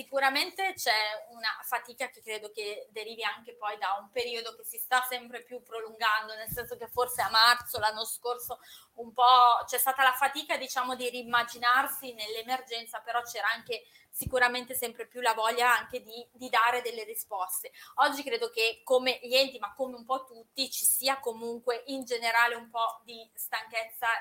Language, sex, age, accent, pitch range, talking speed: Italian, female, 20-39, native, 230-265 Hz, 175 wpm